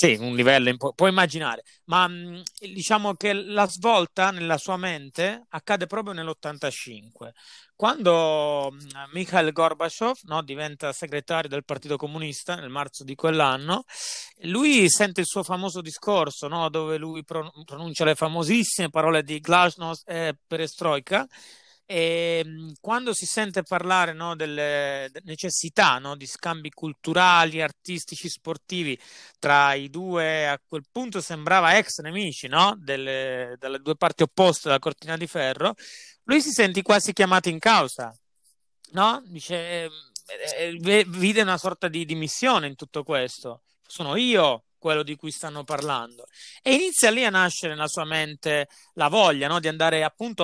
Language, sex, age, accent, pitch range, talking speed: Italian, male, 30-49, native, 150-190 Hz, 145 wpm